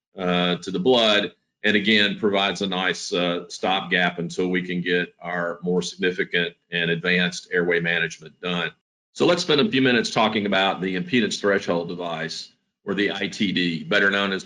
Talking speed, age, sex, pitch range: 175 wpm, 50-69, male, 85-105 Hz